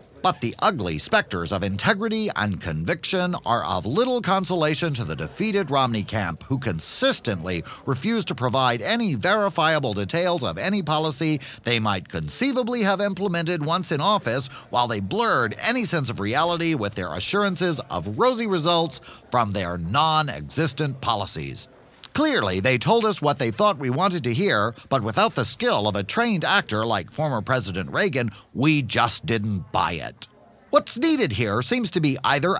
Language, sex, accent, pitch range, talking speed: English, male, American, 110-180 Hz, 160 wpm